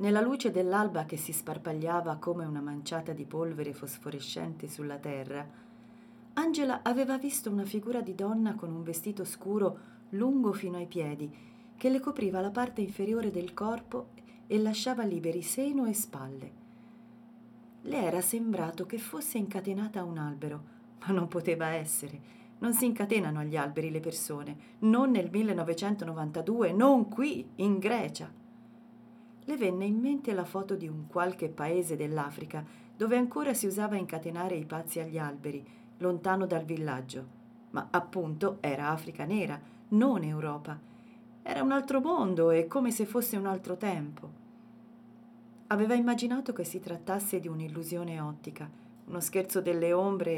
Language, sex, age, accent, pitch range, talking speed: Italian, female, 40-59, native, 165-230 Hz, 145 wpm